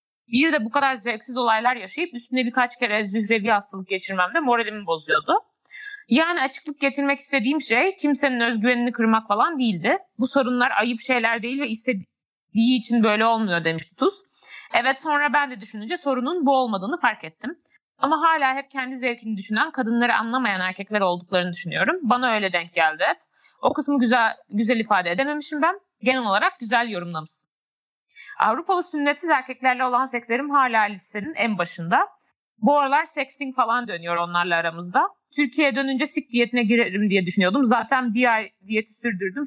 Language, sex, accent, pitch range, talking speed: Turkish, female, native, 215-285 Hz, 150 wpm